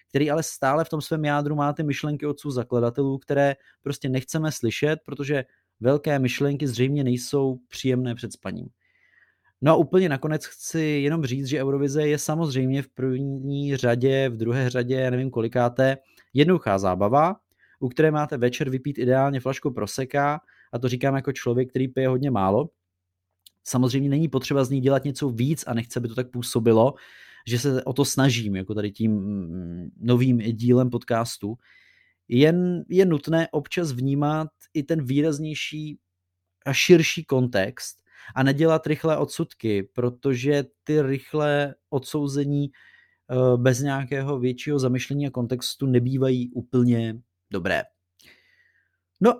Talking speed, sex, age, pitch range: 140 wpm, male, 30-49, 125-145 Hz